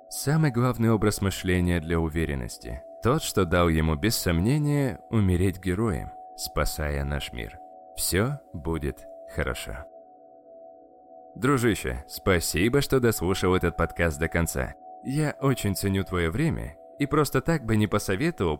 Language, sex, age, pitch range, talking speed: Russian, male, 20-39, 80-130 Hz, 125 wpm